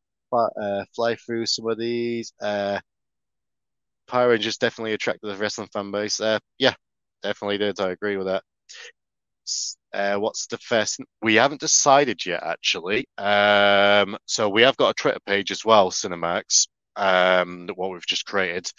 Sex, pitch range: male, 95-115 Hz